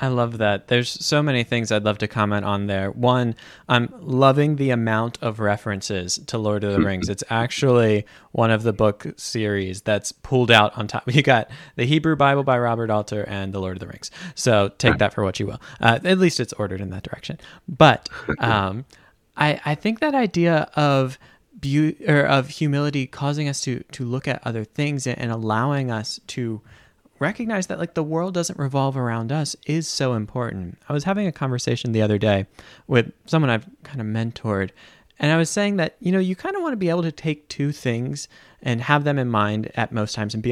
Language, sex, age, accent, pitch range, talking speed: English, male, 20-39, American, 110-150 Hz, 215 wpm